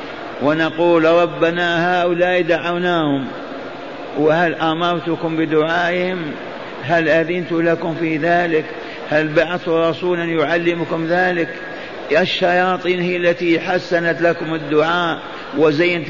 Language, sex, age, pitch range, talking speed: Arabic, male, 50-69, 160-175 Hz, 95 wpm